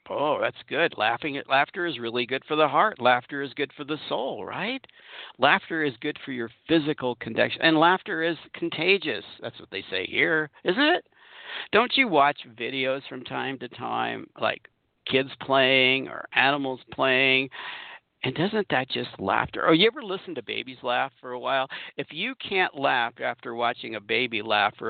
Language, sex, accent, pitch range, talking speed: English, male, American, 130-180 Hz, 185 wpm